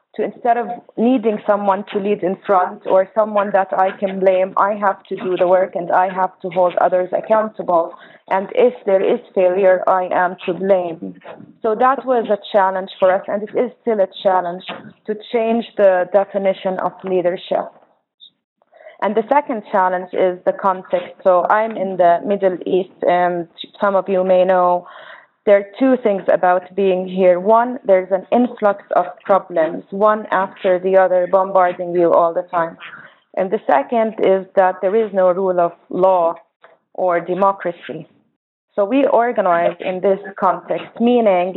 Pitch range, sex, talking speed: 180-215 Hz, female, 170 wpm